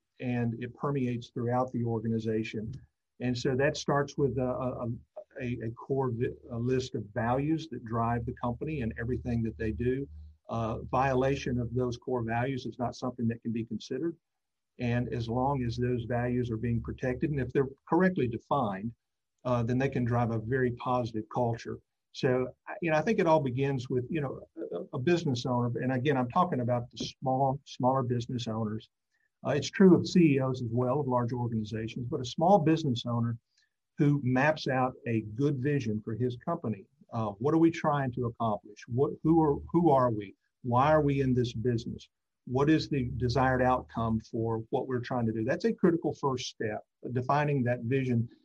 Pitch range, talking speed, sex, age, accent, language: 115-140 Hz, 185 wpm, male, 50-69, American, English